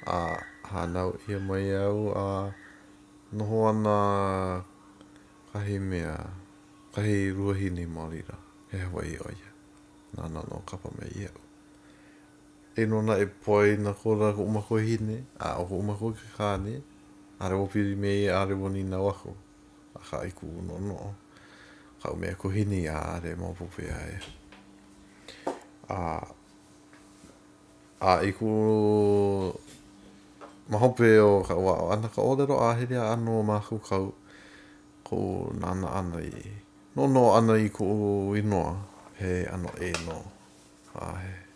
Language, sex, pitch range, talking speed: English, male, 90-105 Hz, 80 wpm